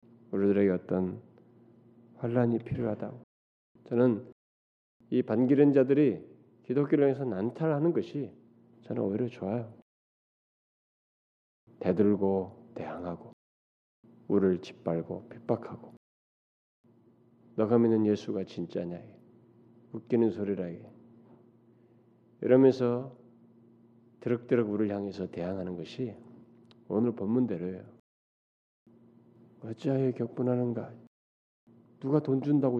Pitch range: 110-130 Hz